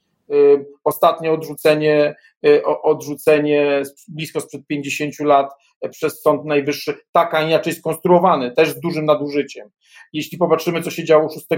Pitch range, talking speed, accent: 150-185 Hz, 125 wpm, native